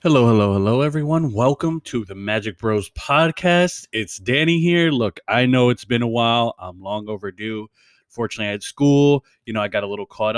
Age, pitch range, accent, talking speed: 20-39, 105-130 Hz, American, 195 wpm